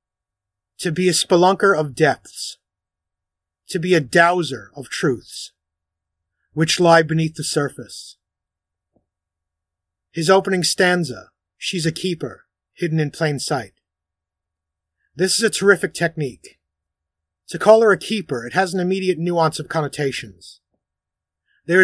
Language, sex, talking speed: English, male, 125 wpm